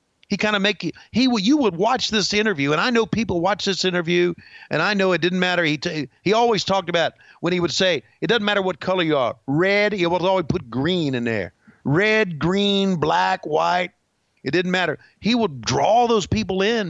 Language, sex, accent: English, male, American